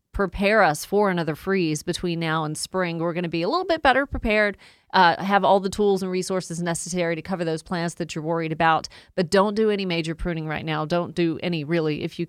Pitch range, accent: 175-210 Hz, American